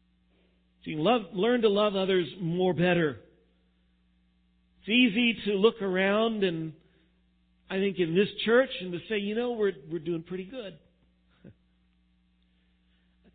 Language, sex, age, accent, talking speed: English, male, 50-69, American, 140 wpm